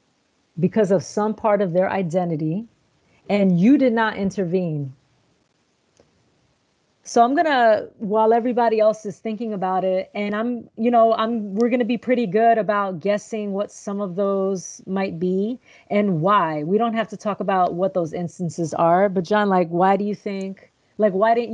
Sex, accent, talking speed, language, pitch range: female, American, 180 wpm, English, 185-230 Hz